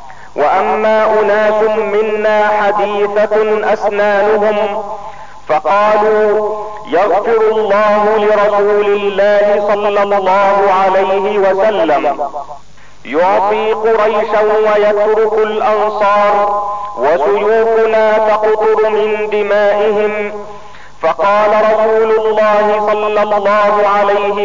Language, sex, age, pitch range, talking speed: Arabic, male, 40-59, 205-220 Hz, 70 wpm